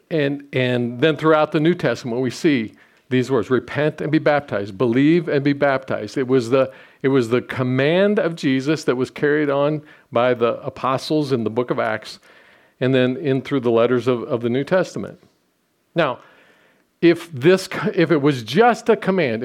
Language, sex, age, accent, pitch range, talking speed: English, male, 50-69, American, 135-185 Hz, 185 wpm